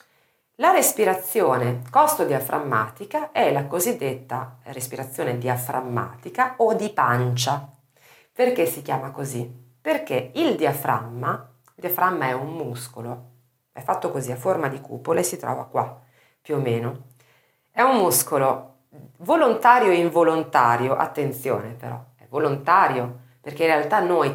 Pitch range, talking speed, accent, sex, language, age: 125-155 Hz, 125 wpm, native, female, Italian, 40-59